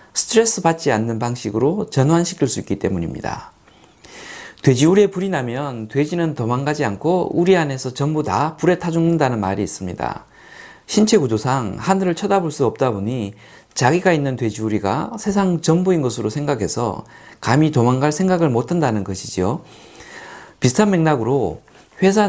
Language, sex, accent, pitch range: Korean, male, native, 115-170 Hz